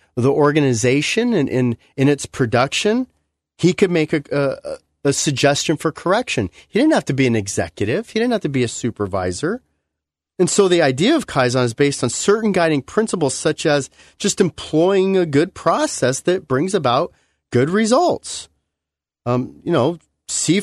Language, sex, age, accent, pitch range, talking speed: English, male, 30-49, American, 120-185 Hz, 170 wpm